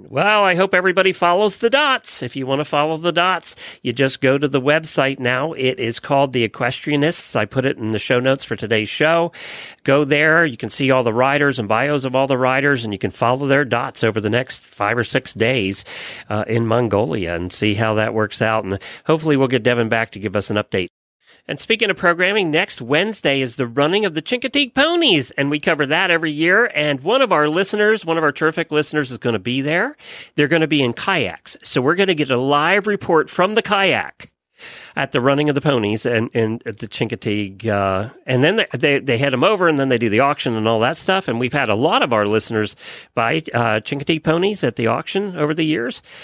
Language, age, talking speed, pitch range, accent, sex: English, 40-59, 235 wpm, 115-165 Hz, American, male